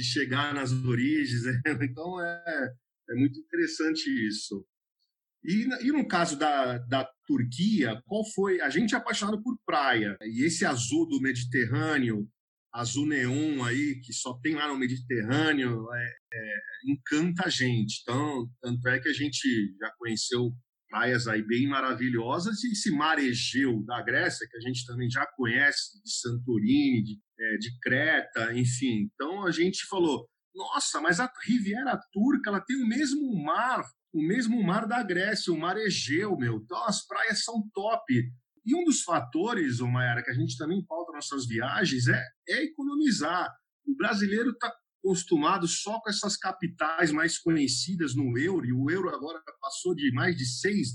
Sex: male